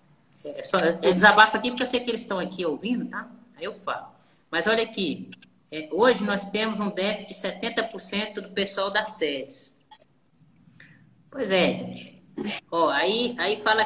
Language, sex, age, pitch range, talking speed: Portuguese, female, 20-39, 150-205 Hz, 170 wpm